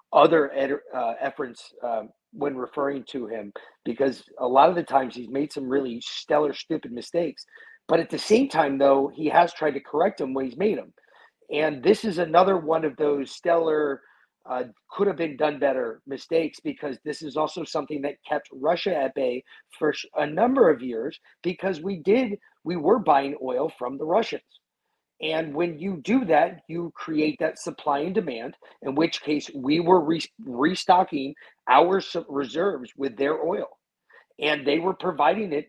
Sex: male